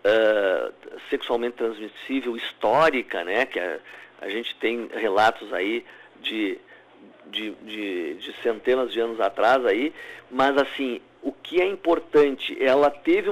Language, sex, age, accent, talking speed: Portuguese, male, 50-69, Brazilian, 115 wpm